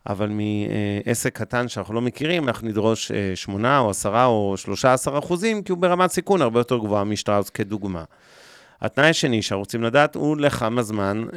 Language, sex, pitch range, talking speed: Hebrew, male, 105-135 Hz, 160 wpm